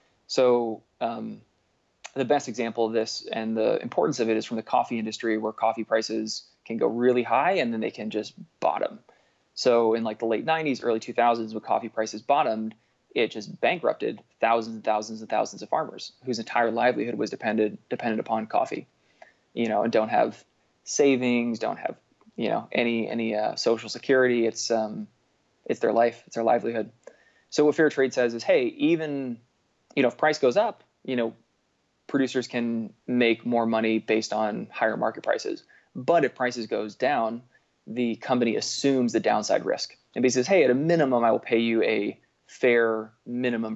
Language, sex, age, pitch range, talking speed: English, male, 20-39, 110-125 Hz, 180 wpm